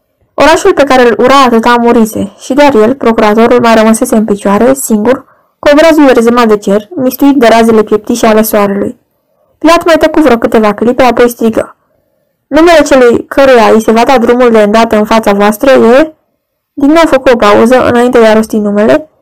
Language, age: Romanian, 10-29